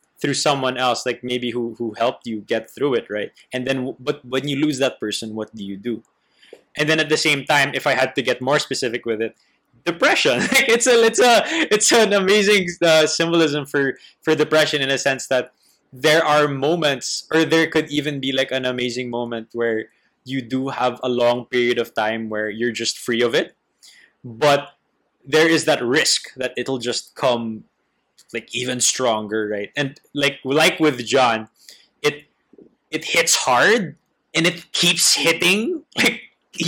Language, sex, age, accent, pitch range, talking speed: English, male, 20-39, Filipino, 120-155 Hz, 175 wpm